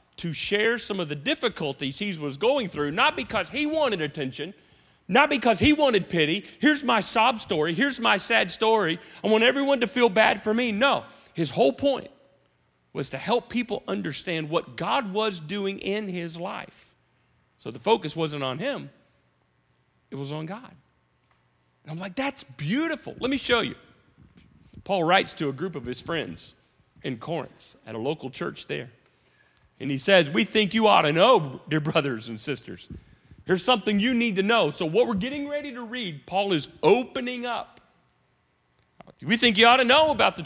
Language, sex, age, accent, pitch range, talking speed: English, male, 40-59, American, 140-230 Hz, 185 wpm